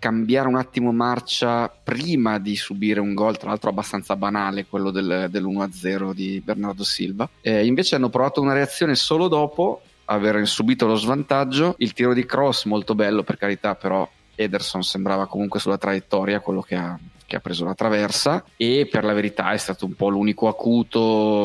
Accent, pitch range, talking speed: native, 100-125 Hz, 170 wpm